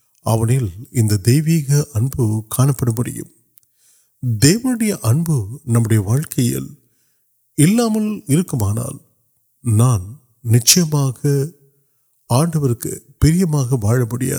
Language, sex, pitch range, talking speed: Urdu, male, 115-150 Hz, 40 wpm